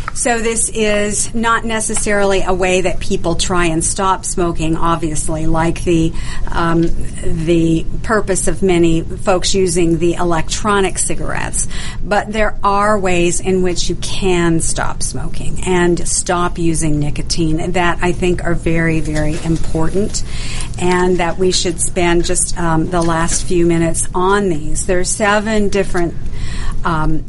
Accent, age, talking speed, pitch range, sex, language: American, 50-69, 140 wpm, 165-185 Hz, female, English